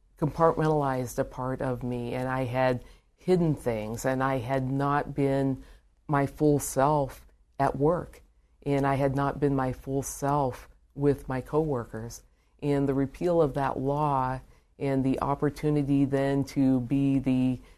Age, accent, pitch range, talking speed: 50-69, American, 125-145 Hz, 150 wpm